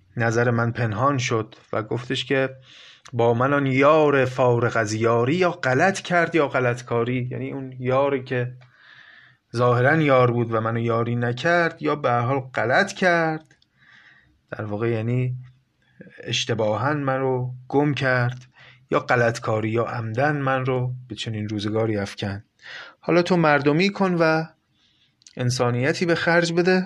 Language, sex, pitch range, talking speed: Persian, male, 115-155 Hz, 135 wpm